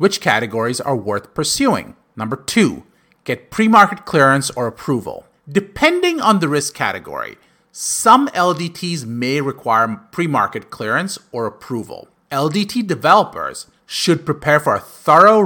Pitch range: 125-190 Hz